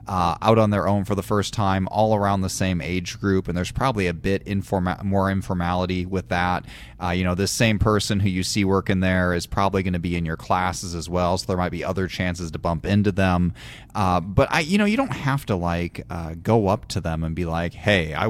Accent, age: American, 30-49